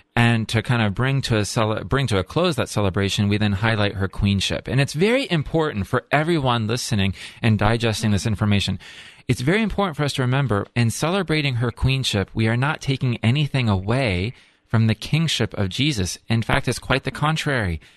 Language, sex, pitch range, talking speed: English, male, 105-140 Hz, 195 wpm